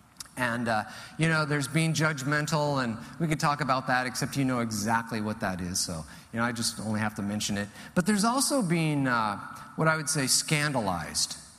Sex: male